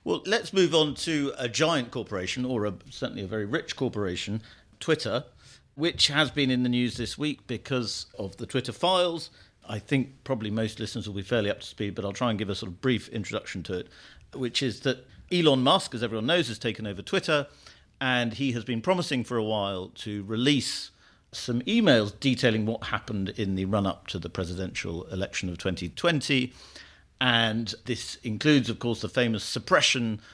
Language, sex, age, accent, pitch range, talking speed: English, male, 50-69, British, 105-135 Hz, 190 wpm